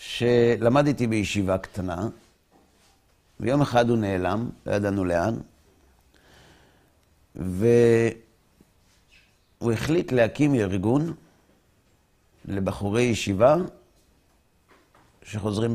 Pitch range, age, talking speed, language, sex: 95-135 Hz, 60-79, 70 wpm, Hebrew, male